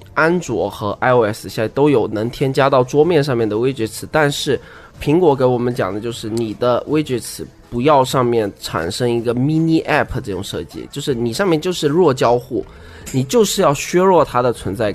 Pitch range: 115-155 Hz